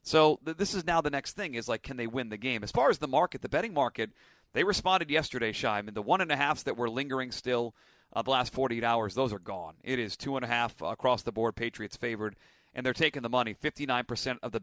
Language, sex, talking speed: English, male, 265 wpm